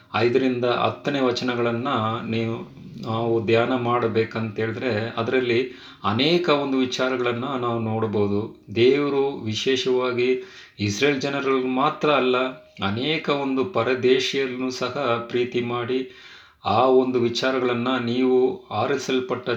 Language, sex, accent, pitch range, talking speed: Kannada, male, native, 110-130 Hz, 90 wpm